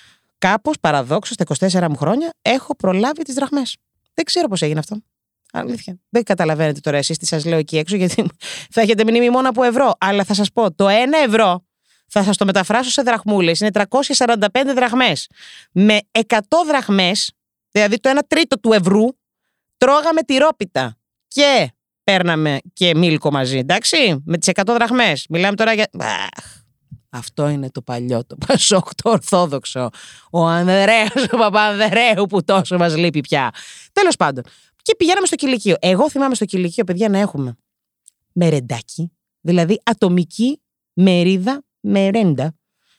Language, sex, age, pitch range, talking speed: Greek, female, 30-49, 165-240 Hz, 150 wpm